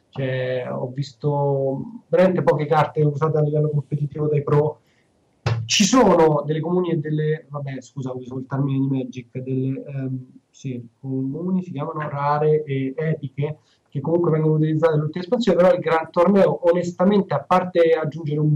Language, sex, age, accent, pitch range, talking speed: Italian, male, 20-39, native, 135-165 Hz, 160 wpm